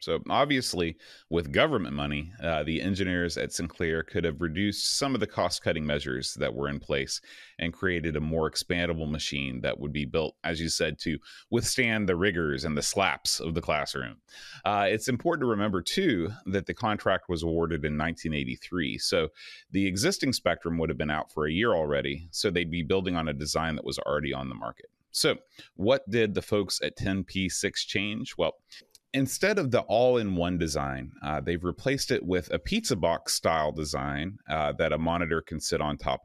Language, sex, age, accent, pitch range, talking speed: English, male, 30-49, American, 80-95 Hz, 190 wpm